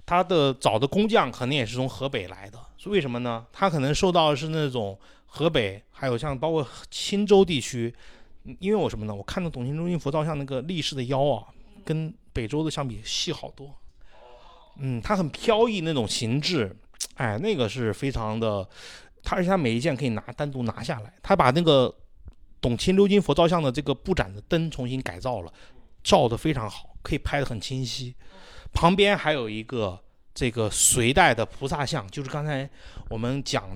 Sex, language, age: male, Chinese, 30-49